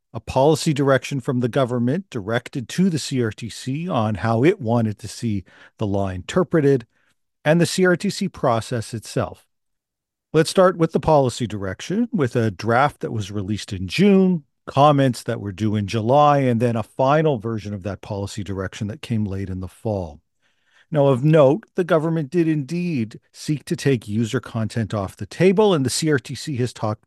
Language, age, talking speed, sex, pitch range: English, 40-59, 175 wpm, male, 110-150 Hz